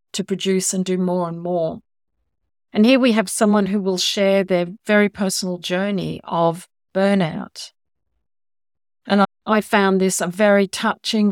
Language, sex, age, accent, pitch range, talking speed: English, female, 50-69, Australian, 175-205 Hz, 155 wpm